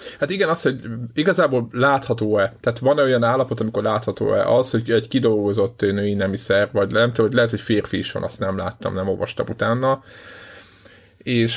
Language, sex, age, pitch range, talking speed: Hungarian, male, 20-39, 105-125 Hz, 170 wpm